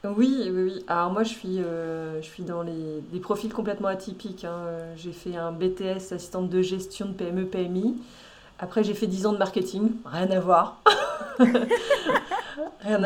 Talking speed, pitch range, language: 170 wpm, 170-210 Hz, French